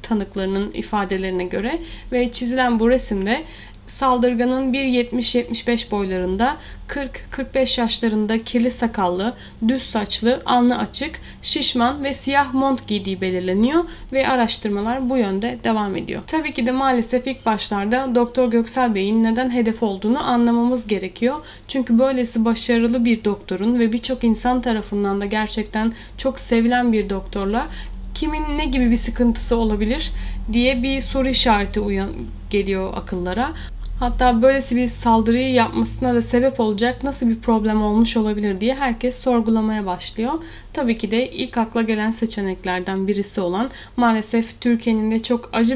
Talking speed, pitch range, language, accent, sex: 135 wpm, 215-250 Hz, Turkish, native, female